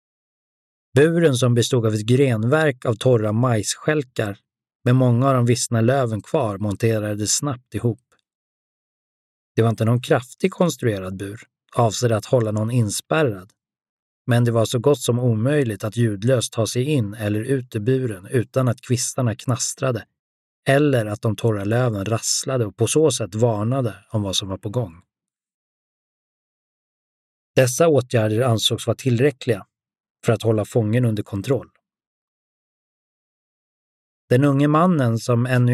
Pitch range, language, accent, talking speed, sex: 110-130 Hz, Swedish, native, 140 wpm, male